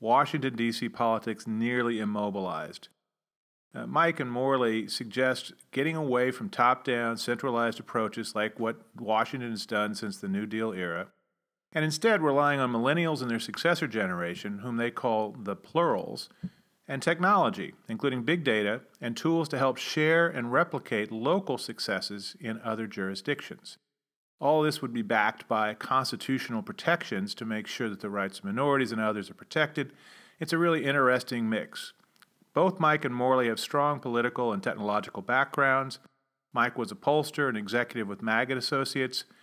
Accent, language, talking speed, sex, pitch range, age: American, English, 155 wpm, male, 115-145 Hz, 40-59